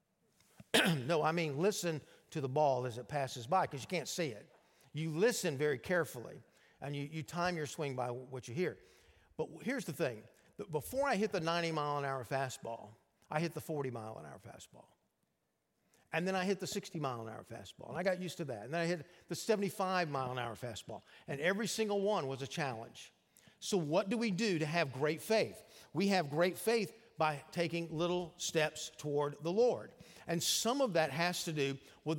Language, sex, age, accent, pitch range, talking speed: English, male, 50-69, American, 145-195 Hz, 185 wpm